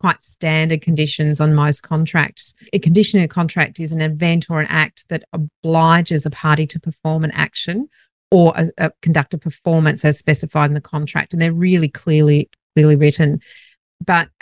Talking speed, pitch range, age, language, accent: 170 wpm, 155-180 Hz, 40-59, English, Australian